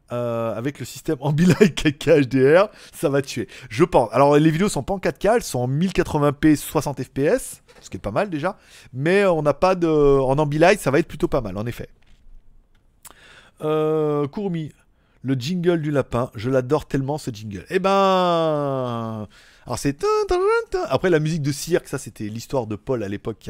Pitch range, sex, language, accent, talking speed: 130-180 Hz, male, French, French, 185 wpm